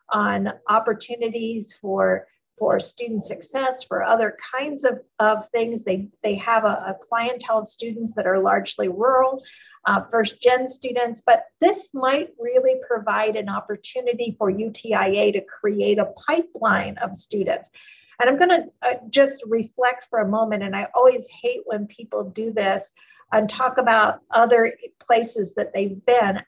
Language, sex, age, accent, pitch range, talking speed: English, female, 50-69, American, 210-250 Hz, 155 wpm